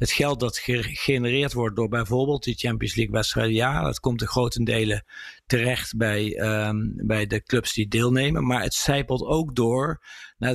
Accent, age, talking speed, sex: Dutch, 50-69, 175 wpm, male